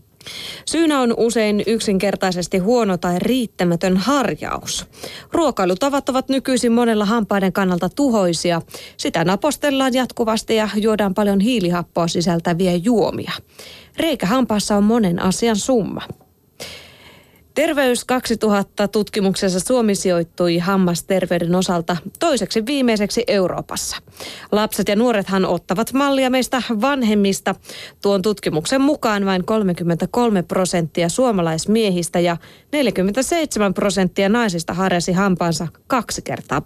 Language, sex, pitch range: Finnish, female, 180-235 Hz